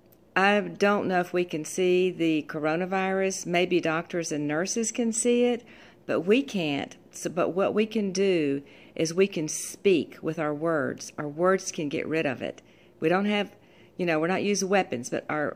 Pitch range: 155-190 Hz